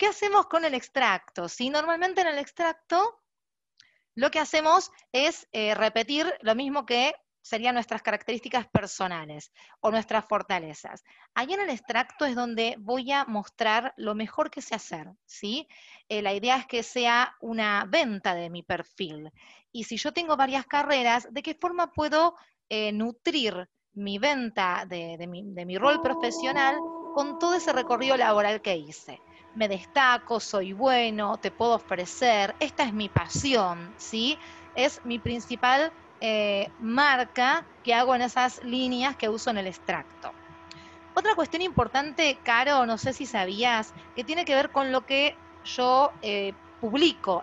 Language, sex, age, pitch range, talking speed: Spanish, female, 30-49, 210-295 Hz, 160 wpm